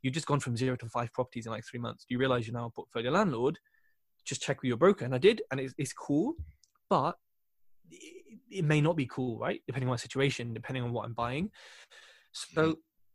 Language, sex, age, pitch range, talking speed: English, male, 10-29, 120-155 Hz, 230 wpm